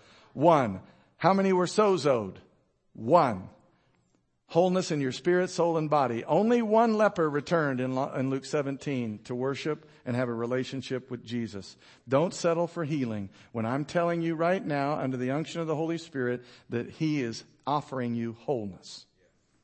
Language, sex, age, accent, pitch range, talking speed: English, male, 50-69, American, 130-170 Hz, 155 wpm